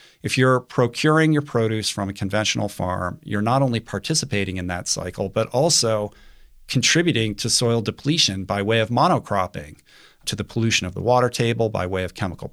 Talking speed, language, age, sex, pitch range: 175 wpm, English, 40-59, male, 100-135 Hz